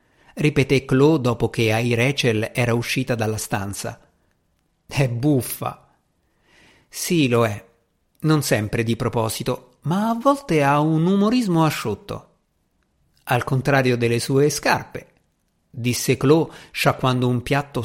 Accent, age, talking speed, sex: native, 50-69, 120 wpm, male